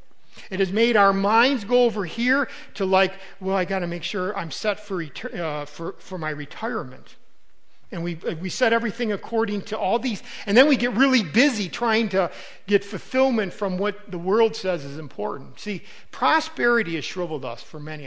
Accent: American